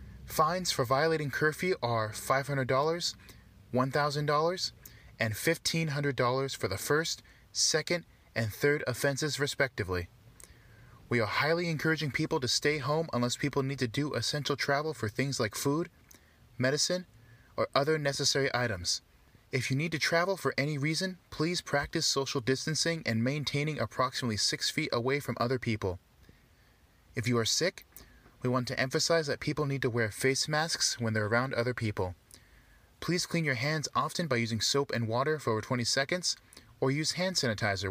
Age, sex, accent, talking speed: 20-39, male, American, 160 wpm